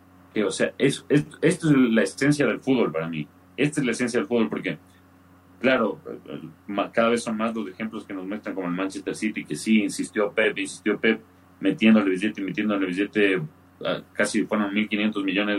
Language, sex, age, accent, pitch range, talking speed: Spanish, male, 40-59, Mexican, 90-115 Hz, 180 wpm